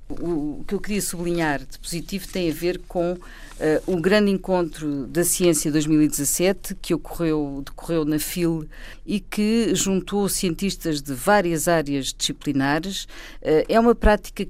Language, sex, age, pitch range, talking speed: Portuguese, female, 50-69, 150-185 Hz, 130 wpm